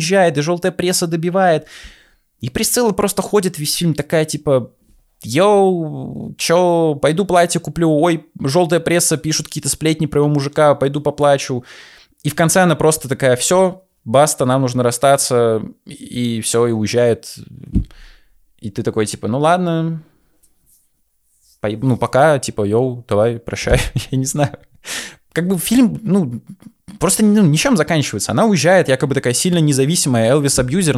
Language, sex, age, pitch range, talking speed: Russian, male, 20-39, 120-170 Hz, 140 wpm